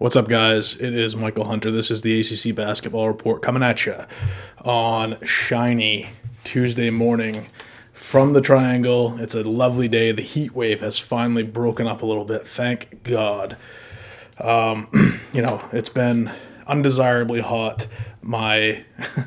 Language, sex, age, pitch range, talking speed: English, male, 20-39, 110-120 Hz, 145 wpm